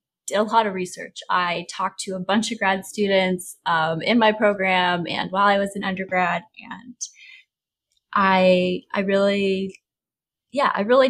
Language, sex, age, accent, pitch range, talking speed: English, female, 20-39, American, 190-225 Hz, 155 wpm